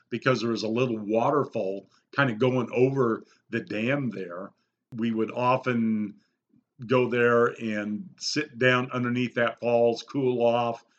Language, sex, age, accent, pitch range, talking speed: English, male, 50-69, American, 115-130 Hz, 140 wpm